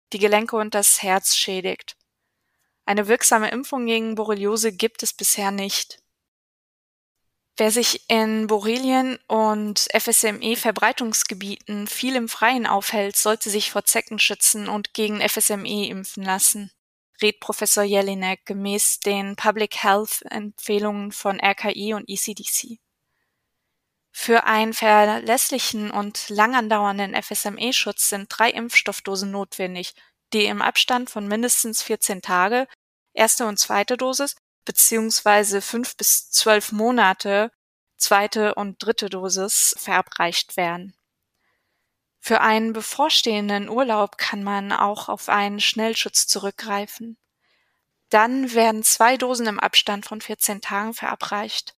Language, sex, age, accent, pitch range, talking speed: German, female, 20-39, German, 205-225 Hz, 115 wpm